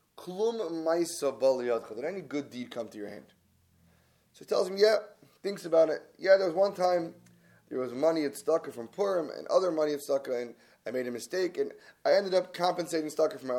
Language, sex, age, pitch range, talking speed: English, male, 20-39, 125-170 Hz, 205 wpm